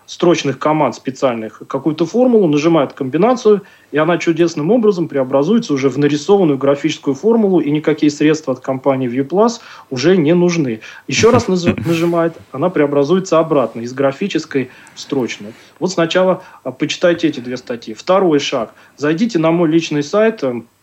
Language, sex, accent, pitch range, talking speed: Russian, male, native, 130-170 Hz, 140 wpm